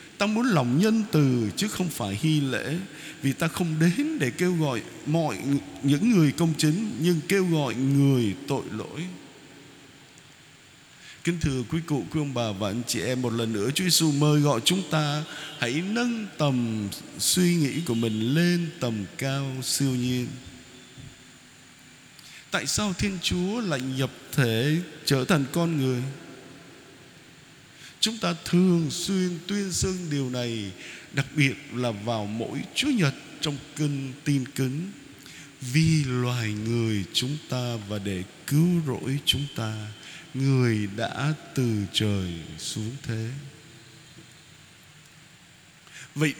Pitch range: 125-160 Hz